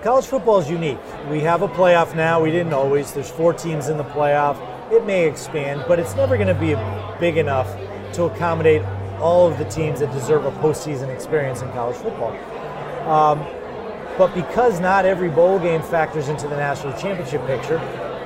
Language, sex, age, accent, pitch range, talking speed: English, male, 30-49, American, 130-165 Hz, 180 wpm